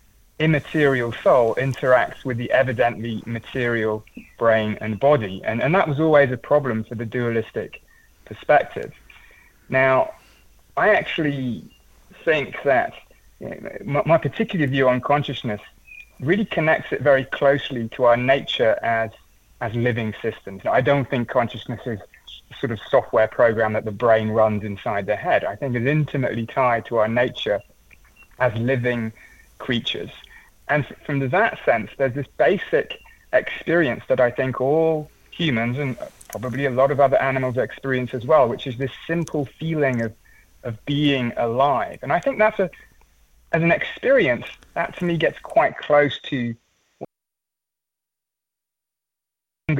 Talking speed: 145 wpm